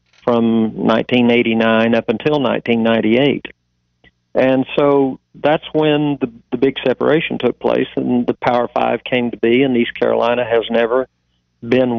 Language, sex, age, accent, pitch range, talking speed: English, male, 50-69, American, 110-145 Hz, 140 wpm